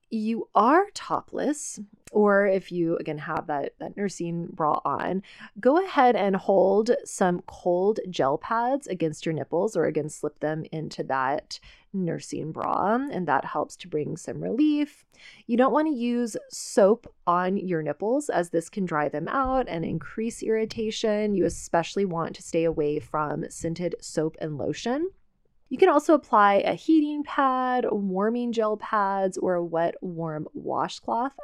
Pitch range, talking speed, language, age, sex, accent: 170-240 Hz, 160 wpm, English, 20-39, female, American